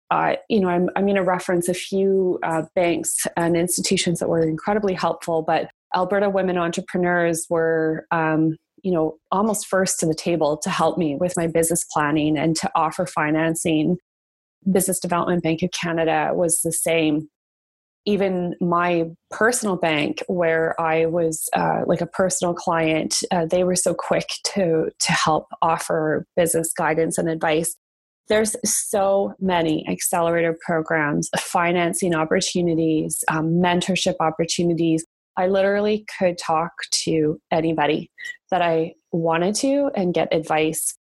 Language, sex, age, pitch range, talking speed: English, female, 20-39, 160-190 Hz, 145 wpm